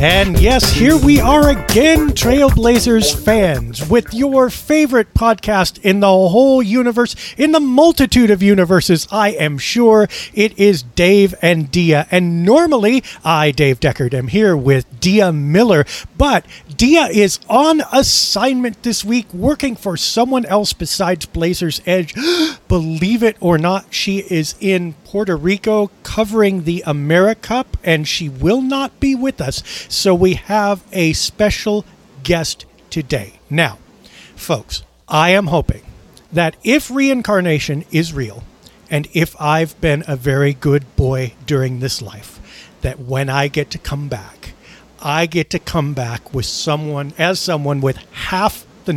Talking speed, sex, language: 145 wpm, male, English